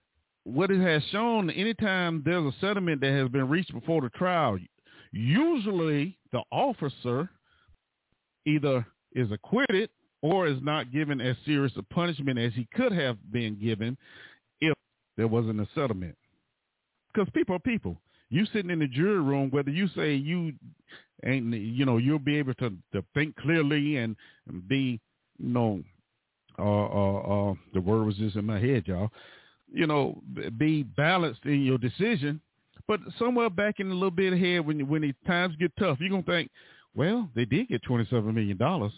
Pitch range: 115-170 Hz